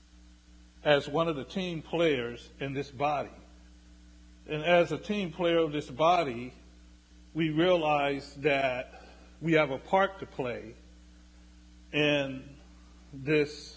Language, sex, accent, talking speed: English, male, American, 120 wpm